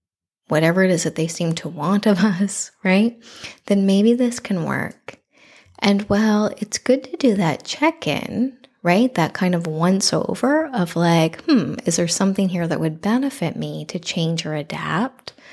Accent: American